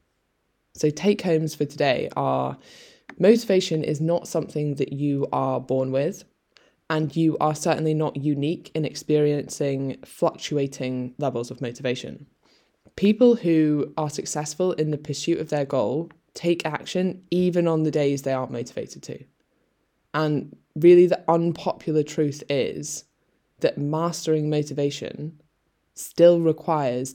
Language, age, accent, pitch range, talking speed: English, 10-29, British, 140-160 Hz, 130 wpm